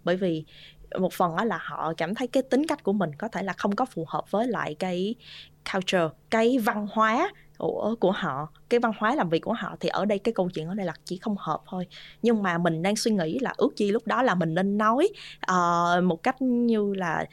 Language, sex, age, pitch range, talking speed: Vietnamese, female, 20-39, 175-235 Hz, 235 wpm